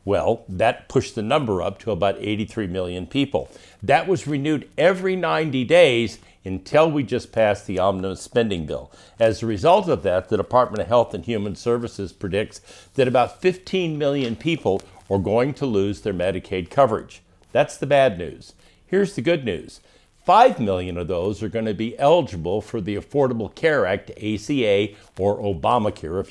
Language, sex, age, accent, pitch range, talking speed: English, male, 60-79, American, 100-135 Hz, 170 wpm